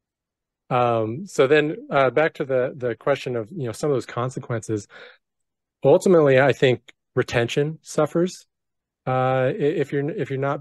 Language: English